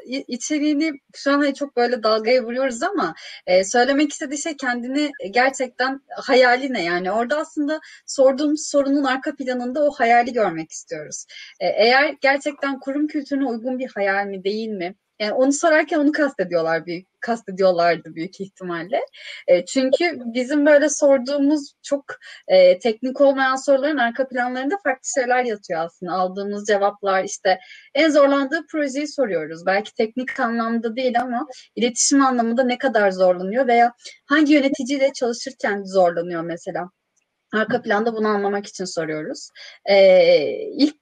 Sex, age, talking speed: female, 30-49, 135 wpm